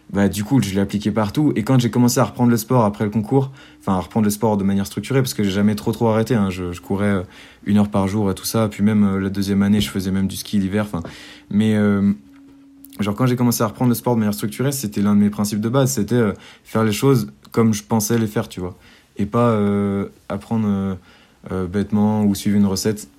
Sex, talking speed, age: male, 255 wpm, 20-39